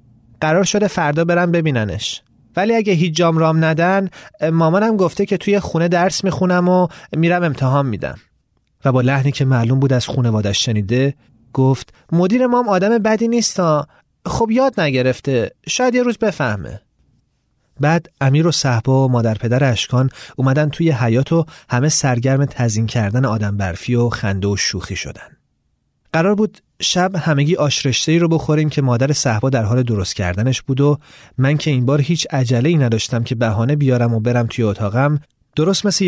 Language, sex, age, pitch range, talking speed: Persian, male, 30-49, 115-160 Hz, 165 wpm